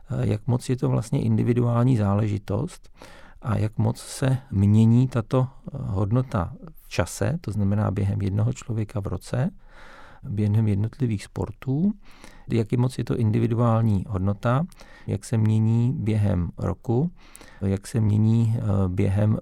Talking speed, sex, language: 130 wpm, male, Czech